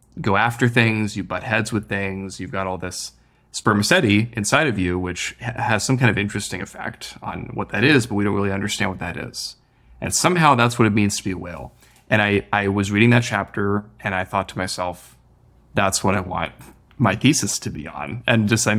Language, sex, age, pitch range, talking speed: English, male, 20-39, 95-110 Hz, 225 wpm